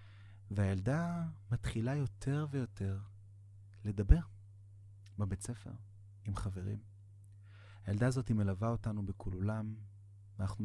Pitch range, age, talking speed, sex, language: 100-105 Hz, 30-49, 95 wpm, male, Hebrew